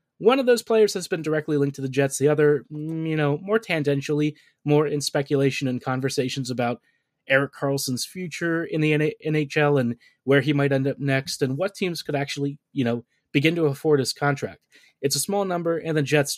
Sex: male